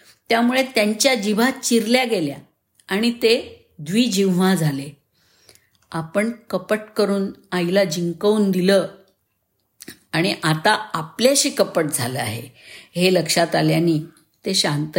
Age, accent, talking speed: 50-69, native, 105 wpm